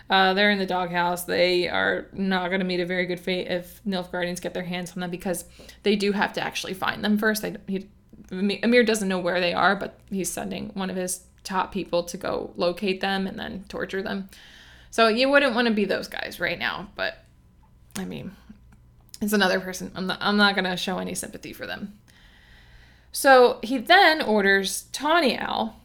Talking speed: 195 wpm